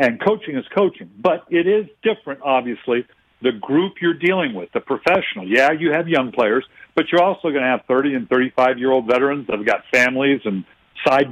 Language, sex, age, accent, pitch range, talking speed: English, male, 60-79, American, 130-180 Hz, 200 wpm